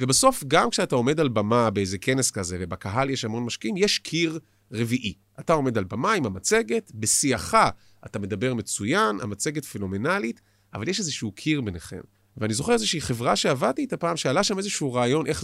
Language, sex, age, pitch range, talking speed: Hebrew, male, 30-49, 105-170 Hz, 175 wpm